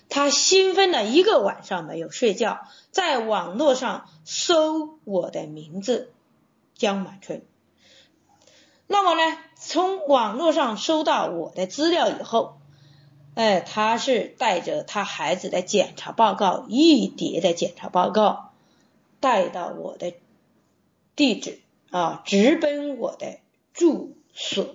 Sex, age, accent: female, 20-39, native